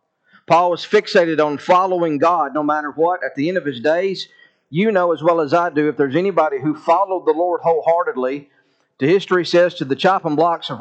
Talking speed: 210 wpm